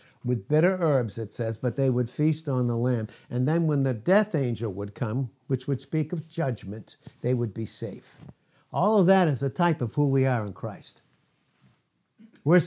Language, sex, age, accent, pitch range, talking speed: English, male, 60-79, American, 120-155 Hz, 200 wpm